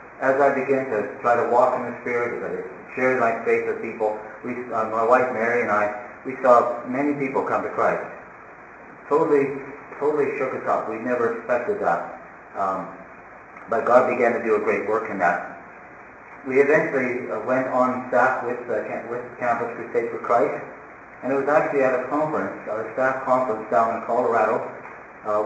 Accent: American